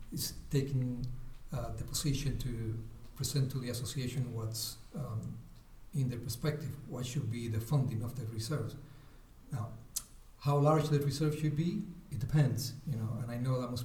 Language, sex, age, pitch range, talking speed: English, male, 50-69, 125-145 Hz, 170 wpm